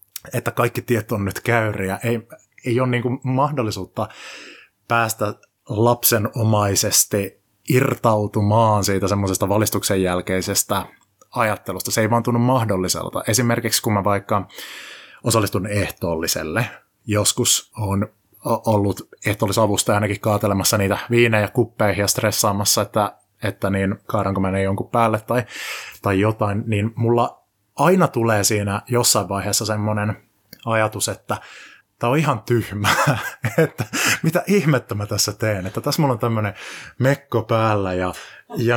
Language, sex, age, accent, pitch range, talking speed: Finnish, male, 20-39, native, 100-120 Hz, 125 wpm